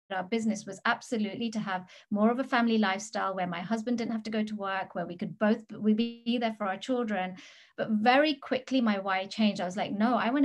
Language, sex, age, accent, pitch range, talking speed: English, female, 30-49, British, 190-230 Hz, 240 wpm